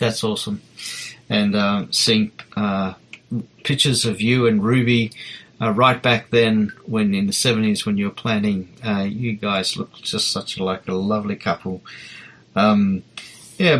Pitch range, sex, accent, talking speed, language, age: 100-125 Hz, male, Australian, 150 wpm, English, 30-49